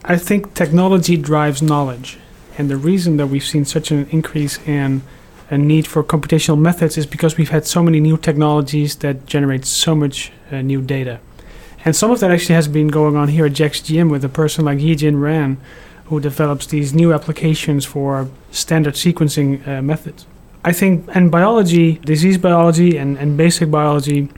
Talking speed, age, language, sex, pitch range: 180 wpm, 30-49, English, male, 150-175 Hz